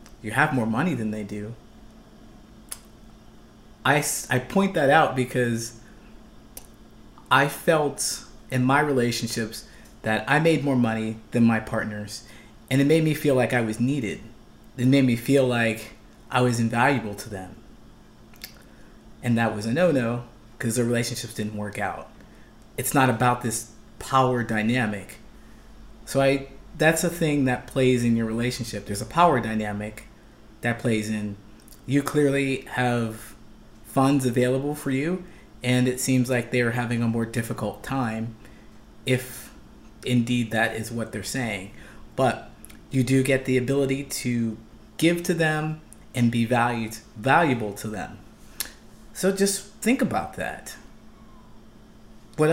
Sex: male